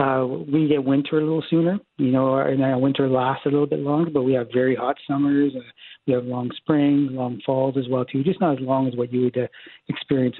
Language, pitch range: English, 130-145 Hz